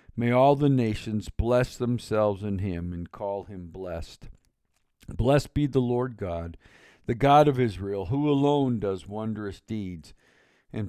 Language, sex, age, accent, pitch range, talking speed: English, male, 50-69, American, 100-125 Hz, 150 wpm